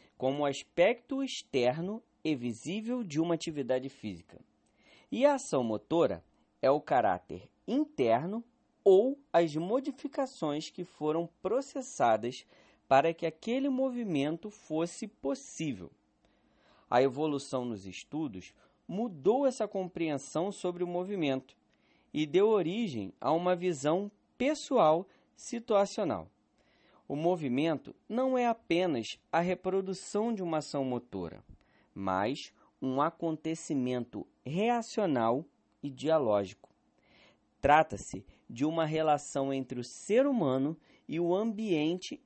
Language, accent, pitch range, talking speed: Portuguese, Brazilian, 140-225 Hz, 105 wpm